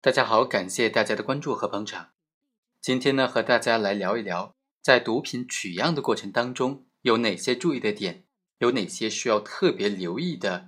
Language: Chinese